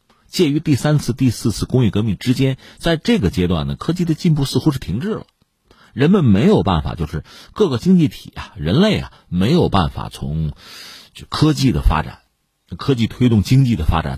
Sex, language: male, Chinese